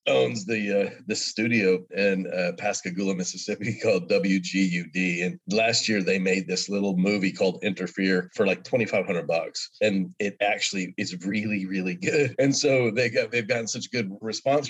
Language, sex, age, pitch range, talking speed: English, male, 40-59, 90-110 Hz, 170 wpm